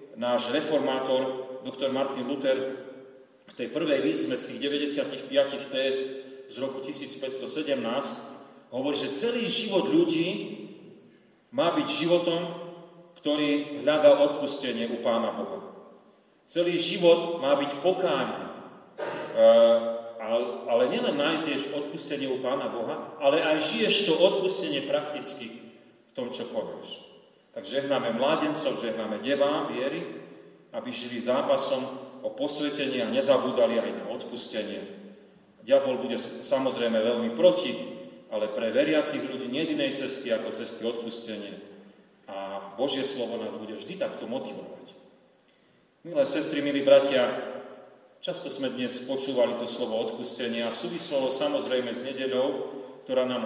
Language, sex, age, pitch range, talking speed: Slovak, male, 40-59, 125-170 Hz, 125 wpm